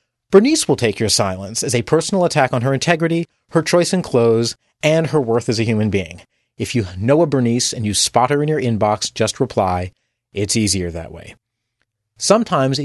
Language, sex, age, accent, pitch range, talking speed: English, male, 30-49, American, 110-155 Hz, 195 wpm